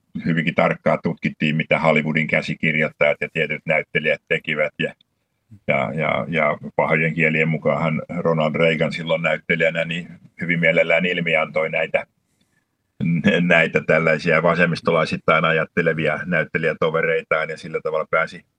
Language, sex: Finnish, male